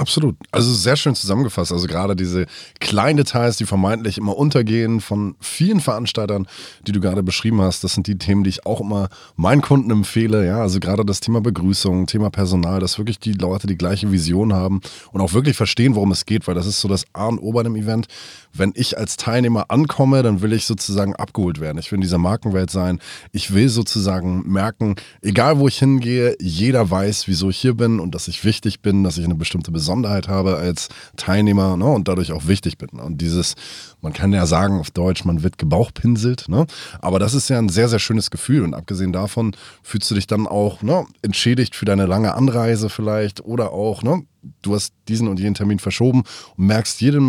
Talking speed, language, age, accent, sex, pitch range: 210 wpm, German, 20-39, German, male, 95-115 Hz